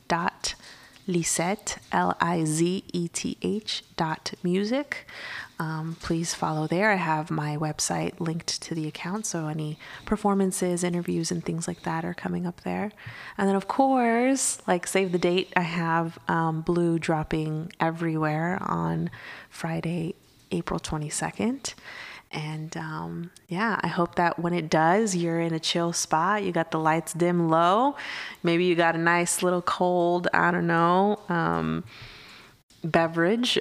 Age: 20-39